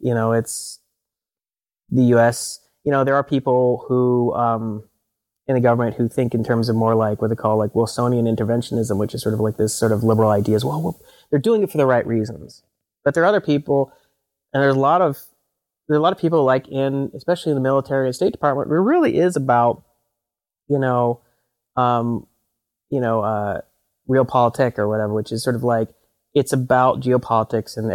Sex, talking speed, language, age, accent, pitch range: male, 210 wpm, English, 30-49, American, 115-135 Hz